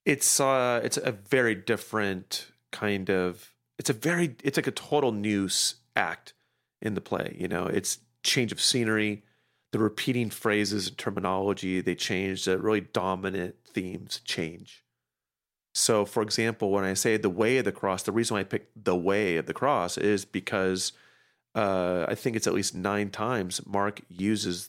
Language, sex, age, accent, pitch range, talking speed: English, male, 40-59, American, 95-125 Hz, 175 wpm